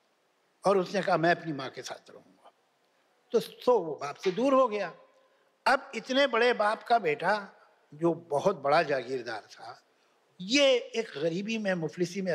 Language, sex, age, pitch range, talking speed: Hindi, male, 60-79, 170-260 Hz, 165 wpm